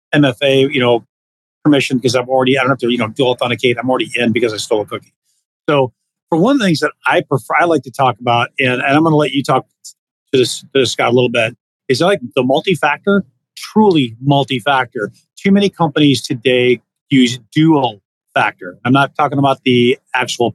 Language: English